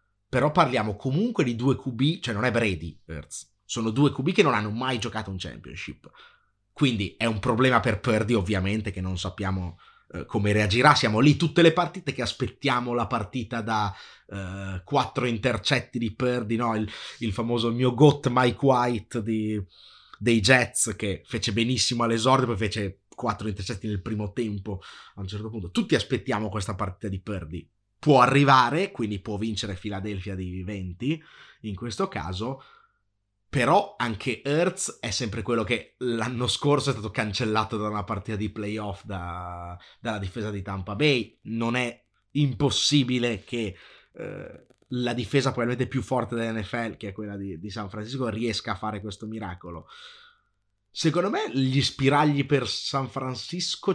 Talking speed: 160 wpm